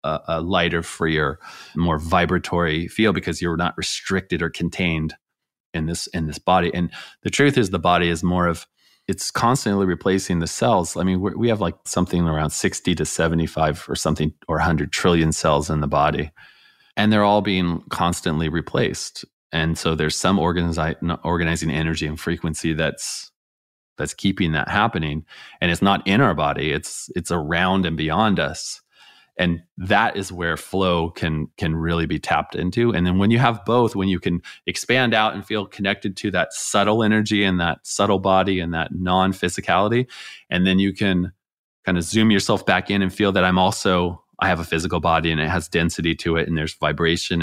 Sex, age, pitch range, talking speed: male, 30-49, 80-95 Hz, 185 wpm